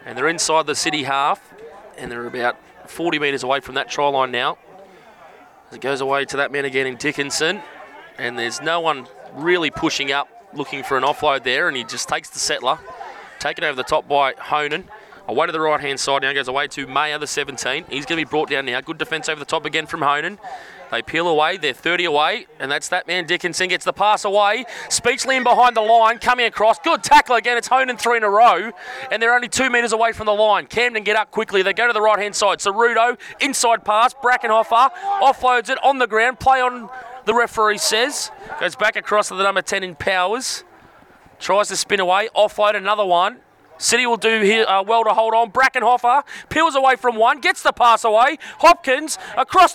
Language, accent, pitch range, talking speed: English, Australian, 160-240 Hz, 210 wpm